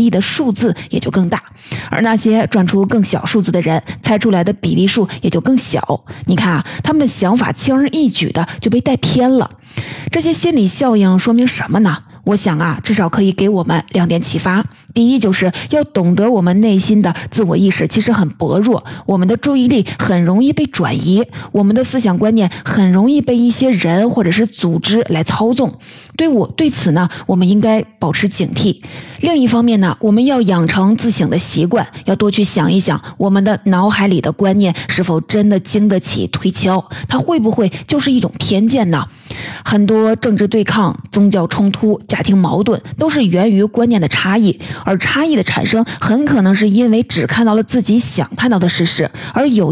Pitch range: 175-225 Hz